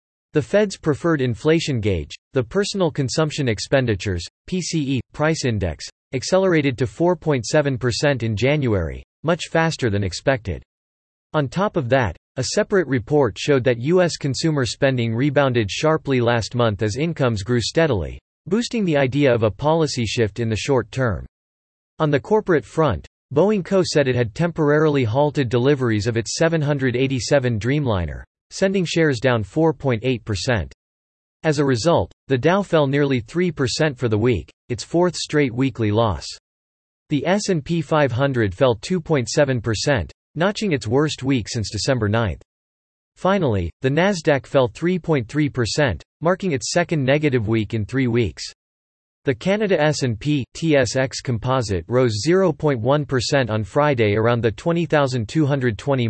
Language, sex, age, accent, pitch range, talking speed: English, male, 40-59, American, 110-155 Hz, 135 wpm